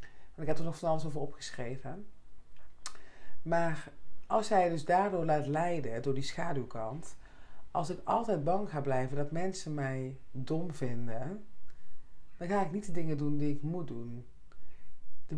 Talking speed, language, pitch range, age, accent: 165 wpm, Dutch, 140-185 Hz, 40-59, Dutch